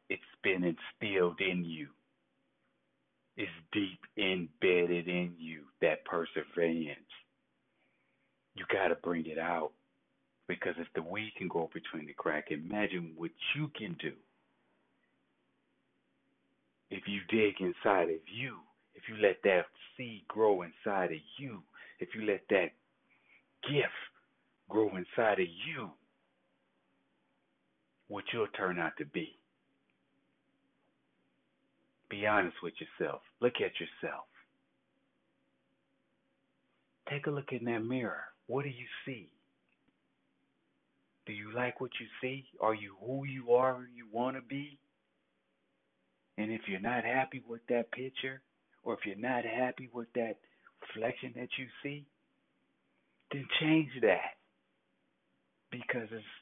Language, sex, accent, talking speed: English, male, American, 125 wpm